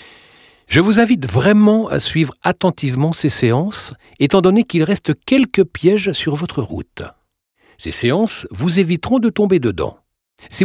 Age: 60-79